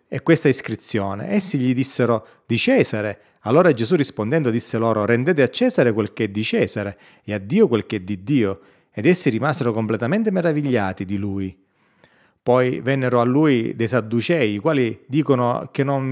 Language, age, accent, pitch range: Italian, 30-49, native, 110-145 Hz